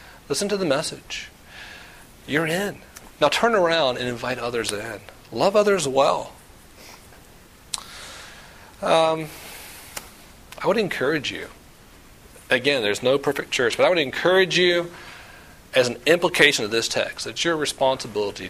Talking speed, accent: 130 wpm, American